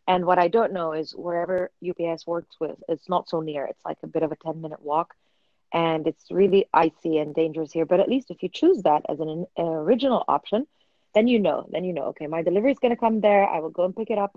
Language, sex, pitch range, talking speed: English, female, 160-205 Hz, 260 wpm